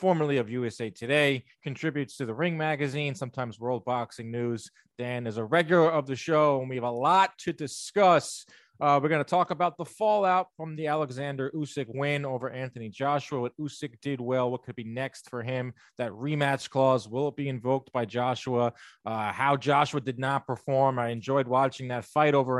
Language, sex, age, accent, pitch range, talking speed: English, male, 20-39, American, 125-150 Hz, 195 wpm